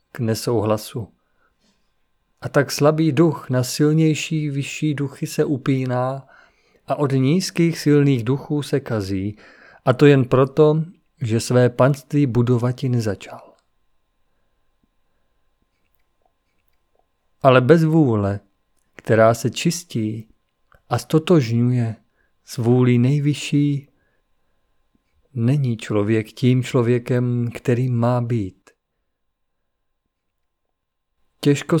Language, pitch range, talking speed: Czech, 110-145 Hz, 85 wpm